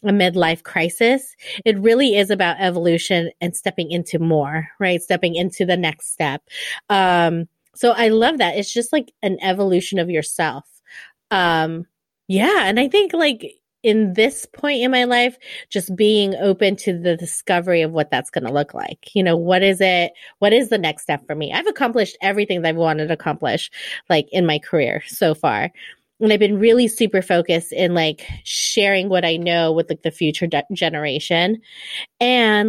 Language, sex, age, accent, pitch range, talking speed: English, female, 30-49, American, 165-215 Hz, 185 wpm